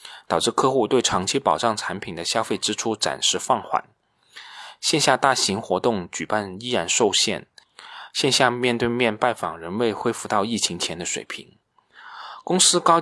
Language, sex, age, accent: Chinese, male, 20-39, native